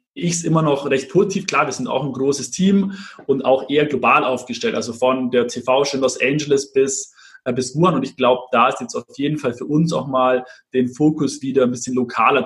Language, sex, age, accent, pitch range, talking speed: German, male, 20-39, German, 130-165 Hz, 225 wpm